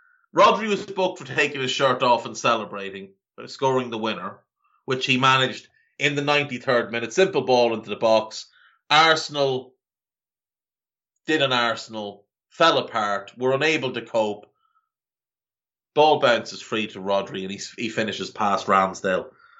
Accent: Irish